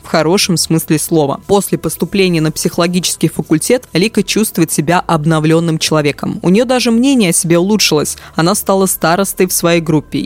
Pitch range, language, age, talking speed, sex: 160-200 Hz, Russian, 20-39, 160 wpm, female